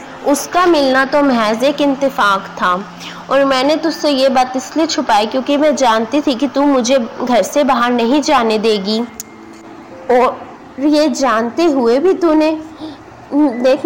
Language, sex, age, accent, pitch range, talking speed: Hindi, female, 20-39, native, 225-295 Hz, 145 wpm